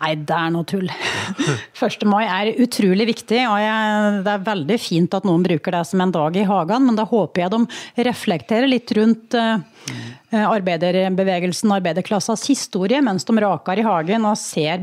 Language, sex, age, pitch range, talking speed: English, female, 30-49, 185-225 Hz, 175 wpm